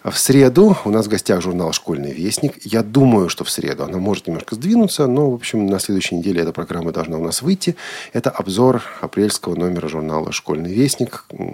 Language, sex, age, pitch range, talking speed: Russian, male, 40-59, 90-130 Hz, 195 wpm